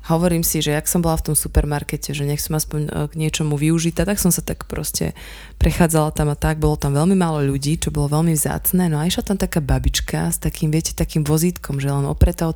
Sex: female